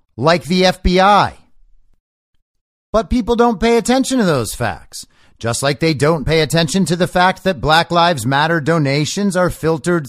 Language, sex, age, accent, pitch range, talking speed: English, male, 50-69, American, 135-185 Hz, 160 wpm